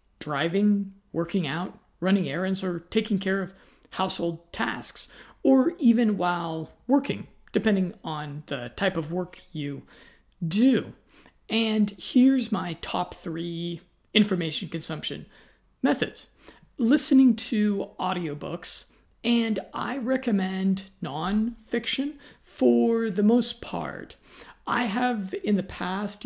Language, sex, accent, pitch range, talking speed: English, male, American, 170-220 Hz, 105 wpm